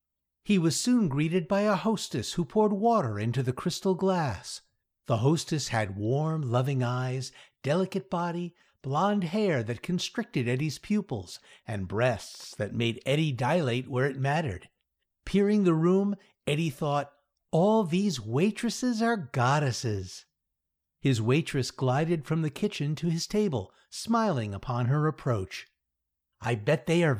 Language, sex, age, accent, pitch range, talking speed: English, male, 60-79, American, 125-190 Hz, 140 wpm